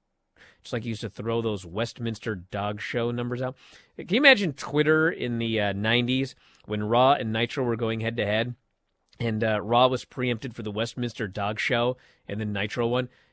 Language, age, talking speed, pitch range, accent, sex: English, 30-49, 195 wpm, 105-140 Hz, American, male